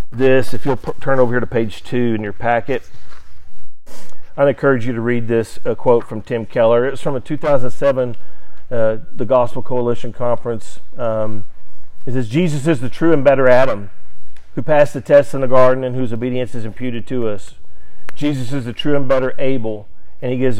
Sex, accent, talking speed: male, American, 190 wpm